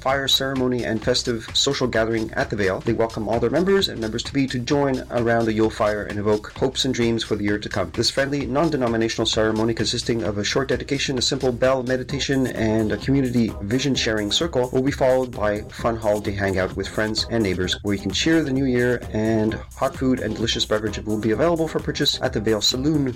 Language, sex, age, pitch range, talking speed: English, male, 30-49, 110-135 Hz, 220 wpm